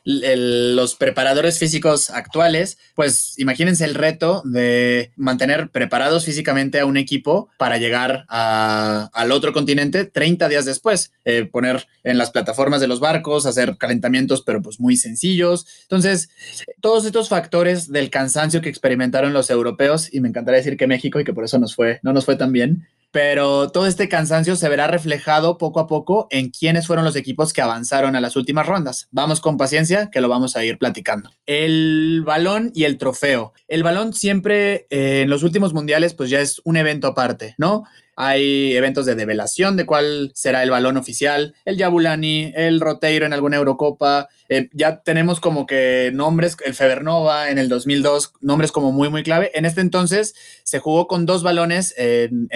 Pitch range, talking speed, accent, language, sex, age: 130-165 Hz, 180 wpm, Mexican, Spanish, male, 20-39